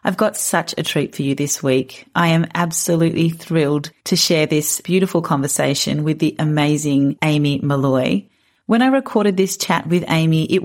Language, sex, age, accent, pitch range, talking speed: English, female, 30-49, Australian, 145-180 Hz, 175 wpm